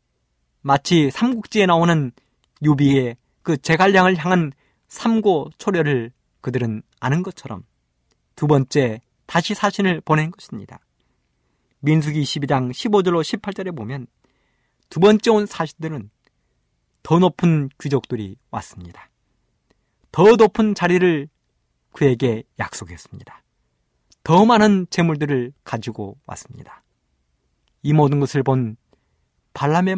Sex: male